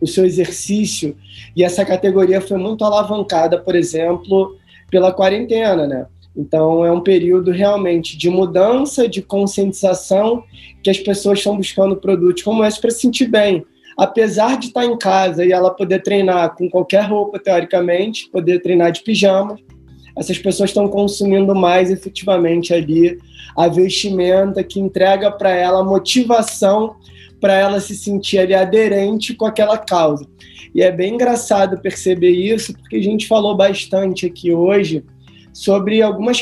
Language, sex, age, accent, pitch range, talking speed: Portuguese, male, 20-39, Brazilian, 175-205 Hz, 150 wpm